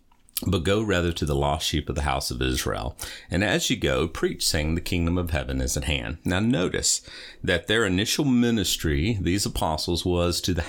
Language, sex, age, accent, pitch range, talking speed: English, male, 40-59, American, 75-90 Hz, 200 wpm